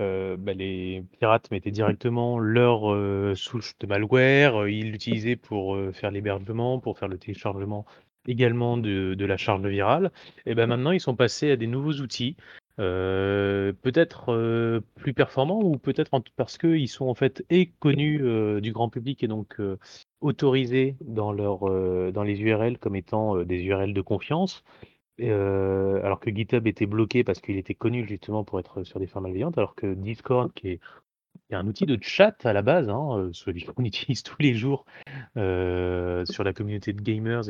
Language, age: French, 30-49